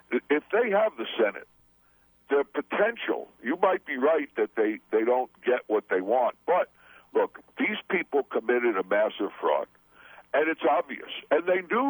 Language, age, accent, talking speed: English, 60-79, American, 165 wpm